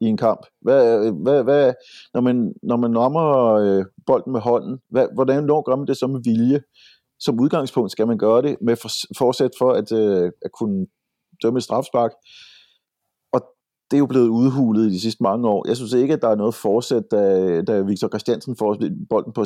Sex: male